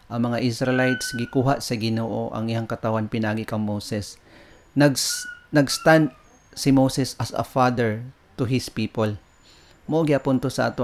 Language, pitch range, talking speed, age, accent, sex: English, 115-130 Hz, 145 wpm, 40-59, Filipino, male